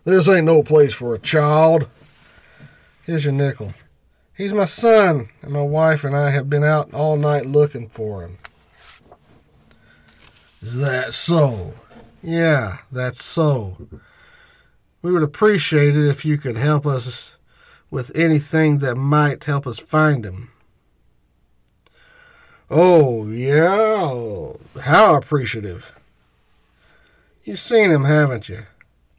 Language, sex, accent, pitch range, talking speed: English, male, American, 130-190 Hz, 120 wpm